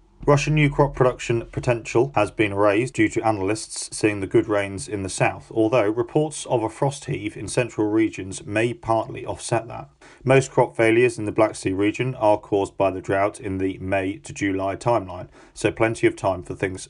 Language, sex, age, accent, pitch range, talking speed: English, male, 40-59, British, 100-130 Hz, 195 wpm